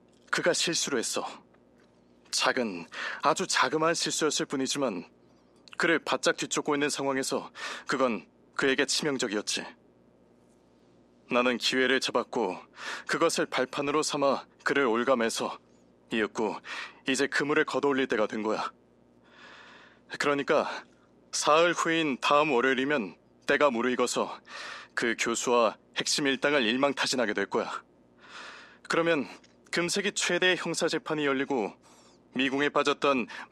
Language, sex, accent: Korean, male, native